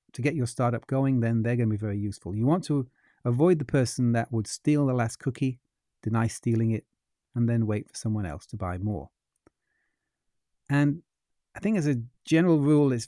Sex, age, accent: male, 30-49, British